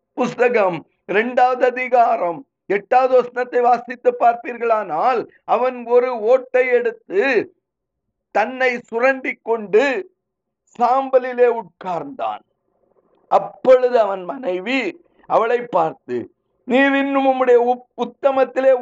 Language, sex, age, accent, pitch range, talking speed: Tamil, male, 50-69, native, 225-275 Hz, 75 wpm